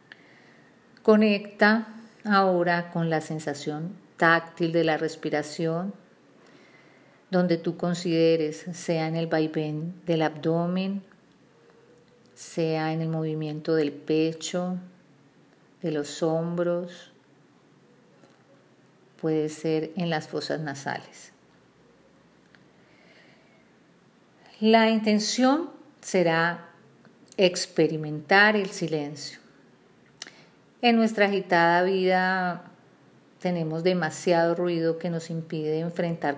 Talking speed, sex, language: 80 wpm, female, English